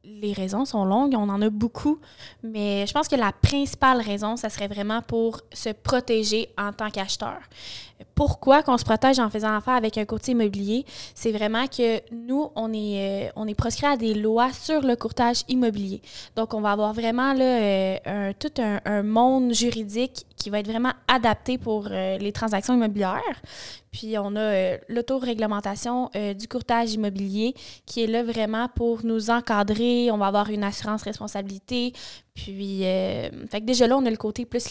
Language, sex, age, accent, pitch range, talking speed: French, female, 20-39, Canadian, 205-245 Hz, 180 wpm